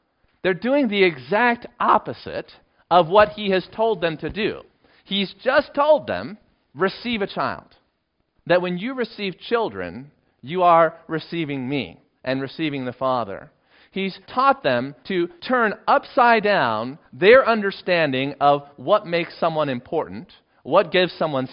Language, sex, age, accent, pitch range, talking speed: English, male, 40-59, American, 140-210 Hz, 140 wpm